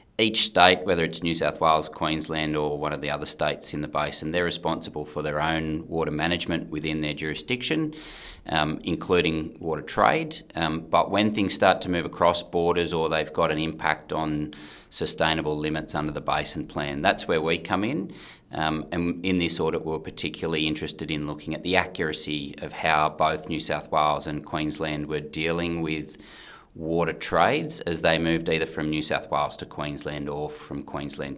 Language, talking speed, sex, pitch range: English, 185 wpm, male, 75-80 Hz